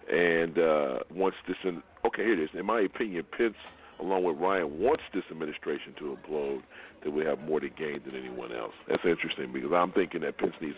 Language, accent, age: English, American, 40-59